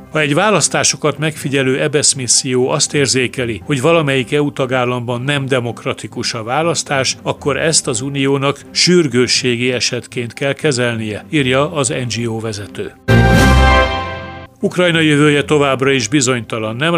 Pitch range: 125-145 Hz